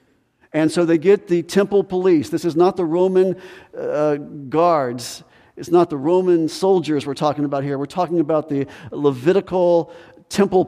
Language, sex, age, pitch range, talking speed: English, male, 50-69, 145-180 Hz, 165 wpm